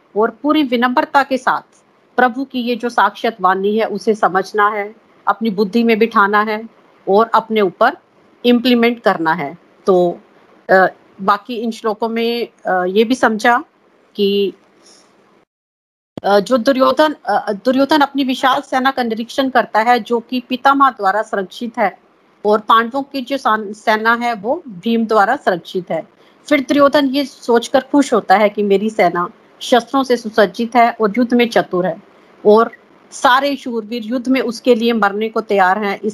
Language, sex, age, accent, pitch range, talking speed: Hindi, female, 50-69, native, 200-250 Hz, 135 wpm